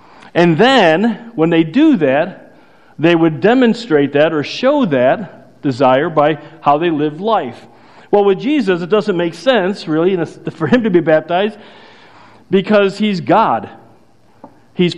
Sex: male